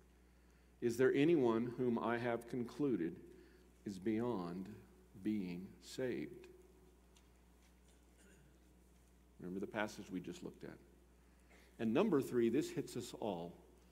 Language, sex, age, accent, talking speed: English, male, 50-69, American, 110 wpm